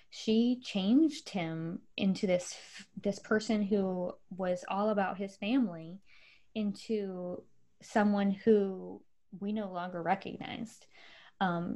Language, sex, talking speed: English, female, 105 wpm